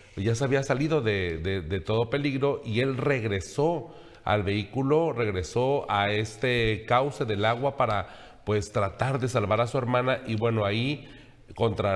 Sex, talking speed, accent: male, 160 wpm, Mexican